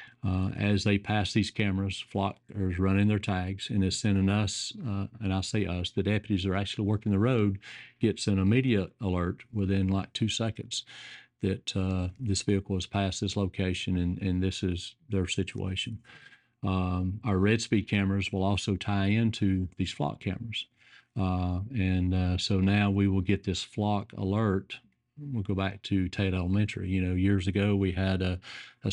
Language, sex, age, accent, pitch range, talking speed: English, male, 40-59, American, 95-105 Hz, 180 wpm